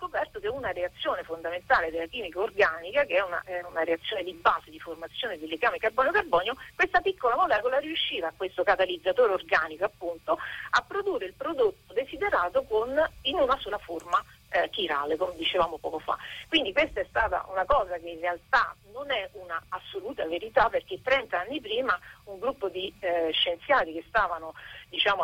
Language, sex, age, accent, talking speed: Italian, female, 50-69, native, 165 wpm